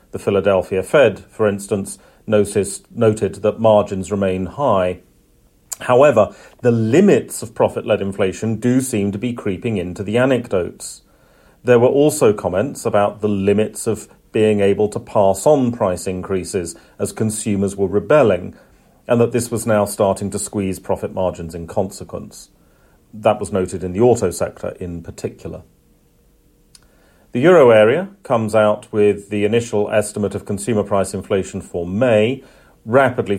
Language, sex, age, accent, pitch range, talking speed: English, male, 40-59, British, 95-110 Hz, 145 wpm